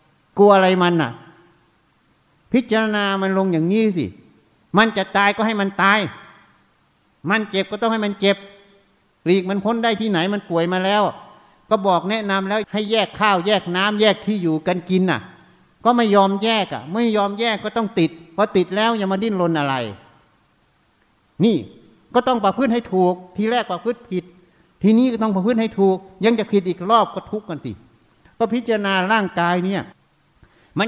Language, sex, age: Thai, male, 60-79